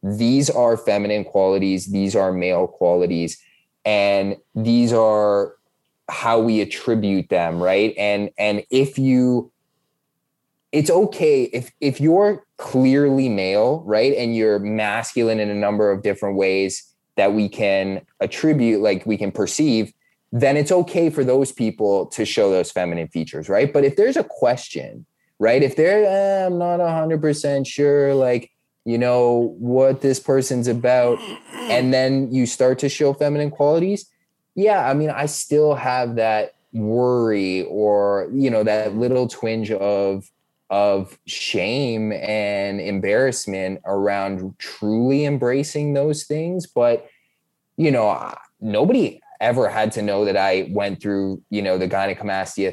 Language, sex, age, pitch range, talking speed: English, male, 20-39, 100-135 Hz, 145 wpm